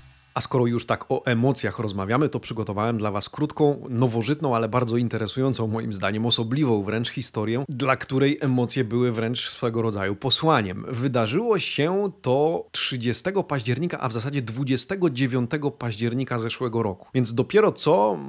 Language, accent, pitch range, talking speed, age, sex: Polish, native, 115-140 Hz, 145 wpm, 30-49, male